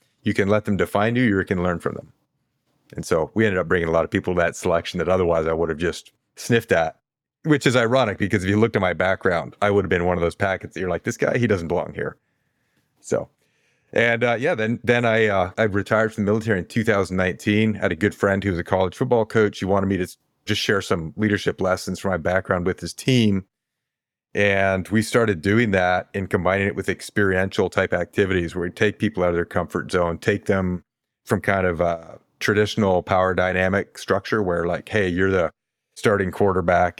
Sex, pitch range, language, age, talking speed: male, 90-105 Hz, English, 30-49, 220 wpm